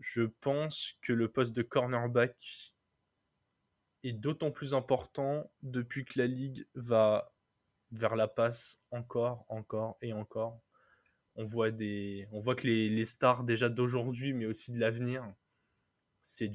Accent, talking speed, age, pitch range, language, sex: French, 140 wpm, 20-39, 110-125 Hz, French, male